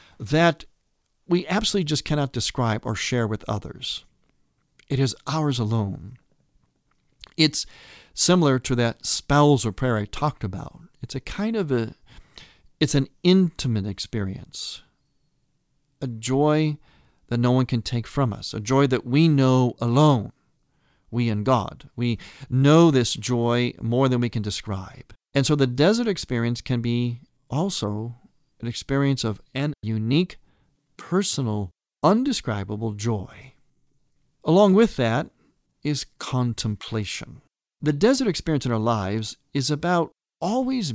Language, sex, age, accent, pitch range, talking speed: English, male, 50-69, American, 110-145 Hz, 130 wpm